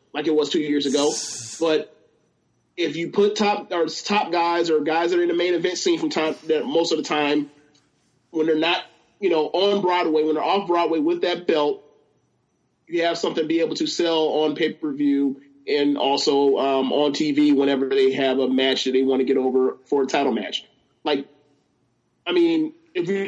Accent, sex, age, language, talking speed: American, male, 30-49, English, 205 wpm